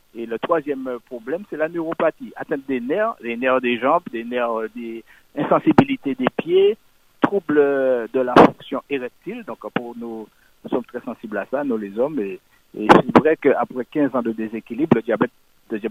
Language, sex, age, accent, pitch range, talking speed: French, male, 60-79, French, 120-170 Hz, 180 wpm